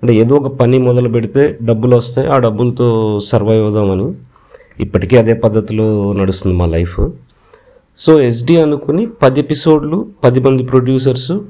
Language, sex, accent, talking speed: Telugu, male, native, 135 wpm